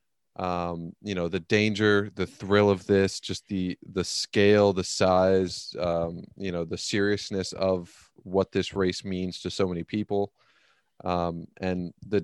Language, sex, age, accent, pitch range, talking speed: English, male, 20-39, American, 90-105 Hz, 155 wpm